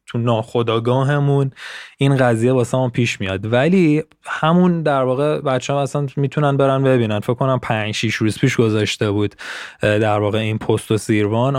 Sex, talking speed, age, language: male, 150 wpm, 20-39, Persian